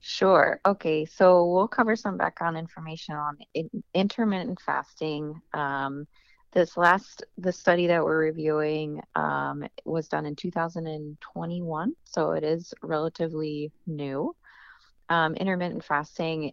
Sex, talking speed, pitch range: female, 120 wpm, 145-175 Hz